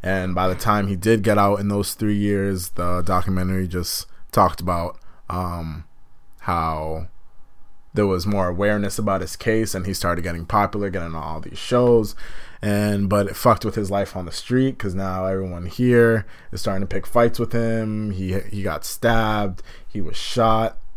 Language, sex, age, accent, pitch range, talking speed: English, male, 20-39, American, 90-110 Hz, 185 wpm